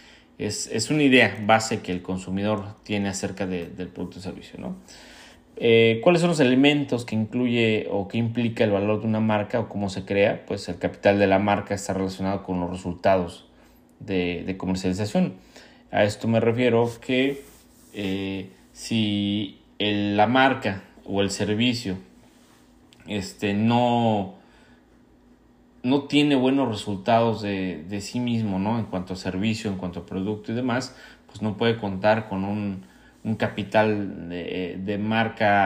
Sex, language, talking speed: male, Spanish, 155 wpm